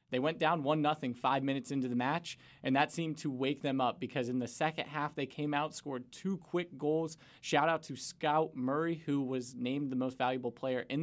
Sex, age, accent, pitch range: male, 20-39, American, 130-150 Hz